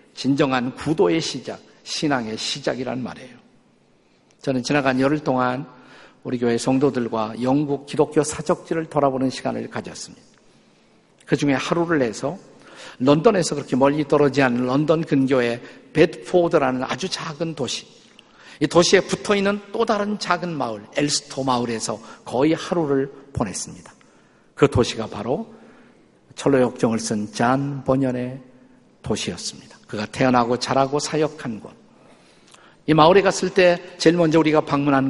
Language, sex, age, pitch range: Korean, male, 50-69, 130-160 Hz